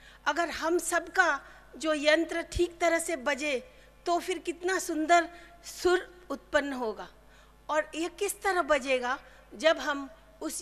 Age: 50-69